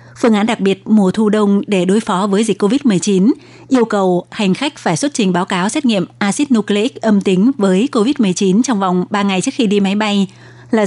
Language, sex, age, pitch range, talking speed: Vietnamese, female, 20-39, 190-230 Hz, 220 wpm